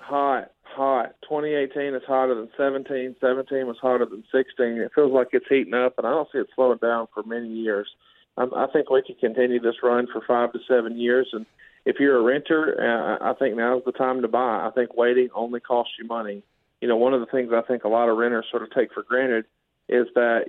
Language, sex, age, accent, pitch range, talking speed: English, male, 40-59, American, 120-130 Hz, 230 wpm